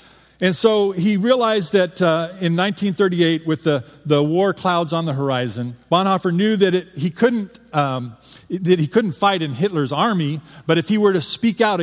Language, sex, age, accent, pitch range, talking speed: English, male, 40-59, American, 150-185 Hz, 190 wpm